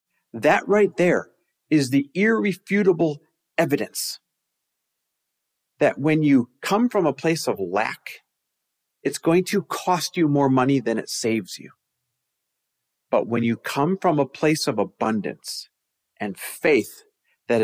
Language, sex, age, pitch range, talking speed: English, male, 40-59, 110-155 Hz, 135 wpm